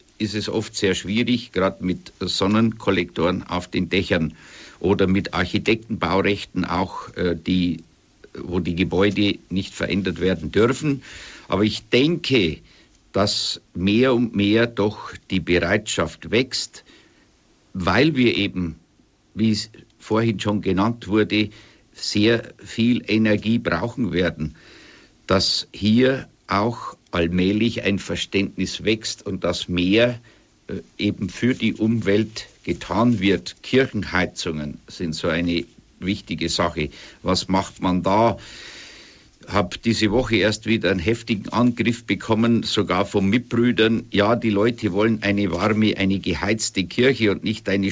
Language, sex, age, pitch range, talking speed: German, male, 60-79, 95-110 Hz, 125 wpm